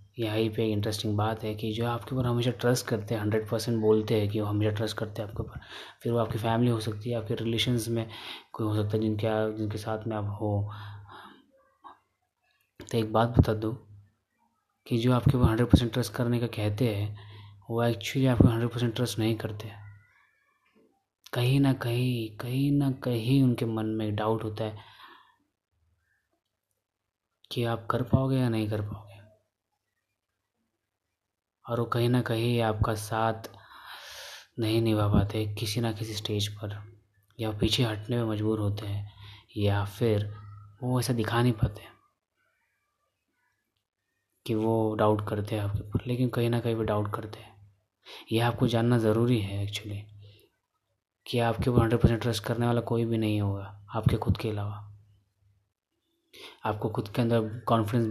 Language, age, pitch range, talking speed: Hindi, 20-39, 105-120 Hz, 165 wpm